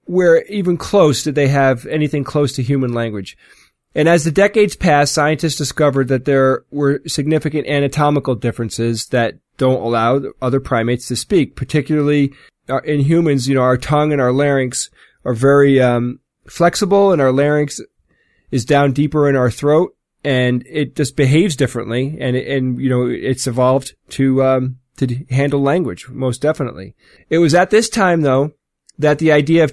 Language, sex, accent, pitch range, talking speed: English, male, American, 130-155 Hz, 165 wpm